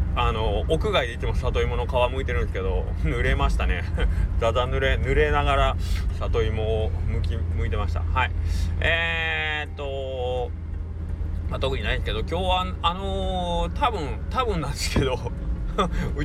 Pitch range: 80-90 Hz